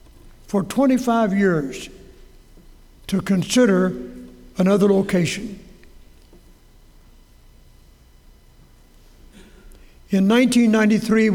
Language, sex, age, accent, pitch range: English, male, 60-79, American, 180-225 Hz